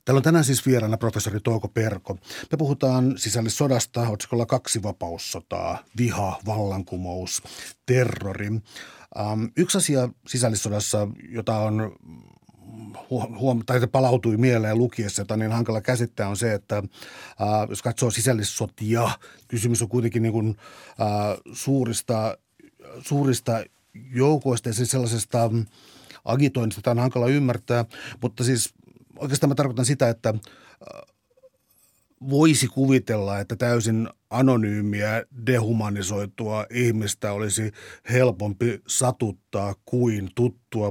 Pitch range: 105-125 Hz